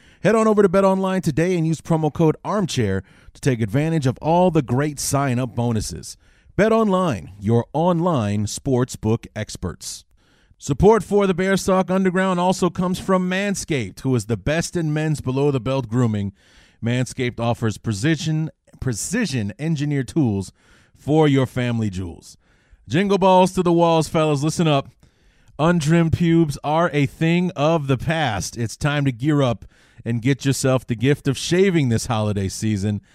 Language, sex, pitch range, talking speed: English, male, 120-165 Hz, 150 wpm